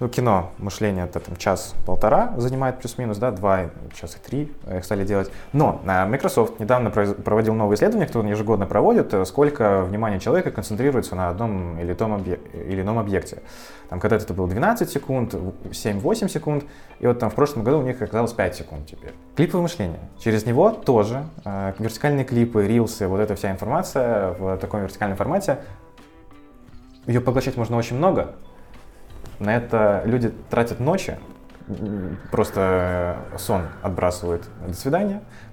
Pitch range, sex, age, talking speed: 95-135 Hz, male, 20-39, 145 wpm